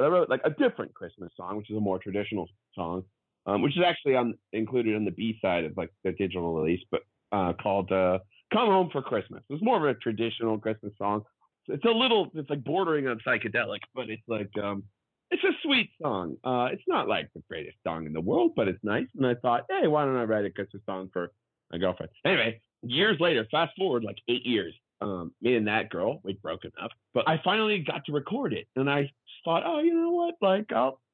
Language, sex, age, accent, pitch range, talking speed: English, male, 30-49, American, 105-155 Hz, 225 wpm